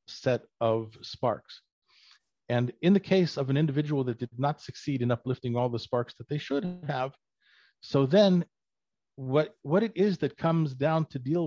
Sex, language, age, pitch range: male, English, 40-59, 115-145 Hz